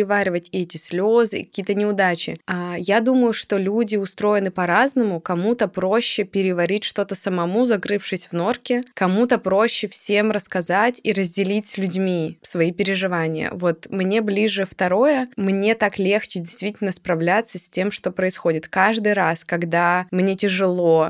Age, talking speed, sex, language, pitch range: 20-39, 140 wpm, female, Russian, 175-210 Hz